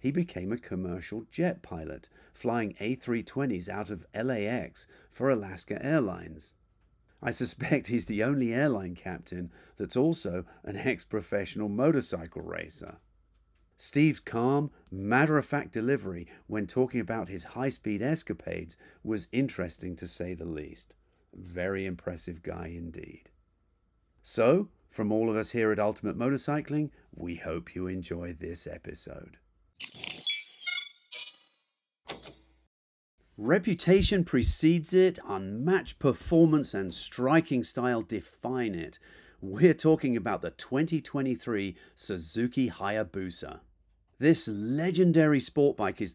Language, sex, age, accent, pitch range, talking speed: English, male, 50-69, British, 95-140 Hz, 110 wpm